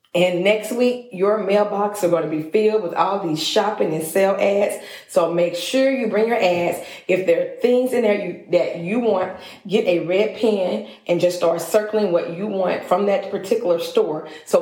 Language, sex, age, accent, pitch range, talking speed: English, female, 40-59, American, 170-220 Hz, 205 wpm